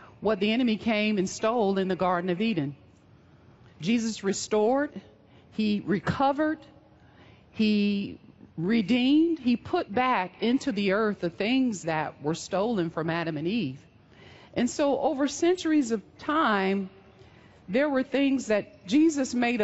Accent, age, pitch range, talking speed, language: American, 50-69, 170-225 Hz, 135 wpm, English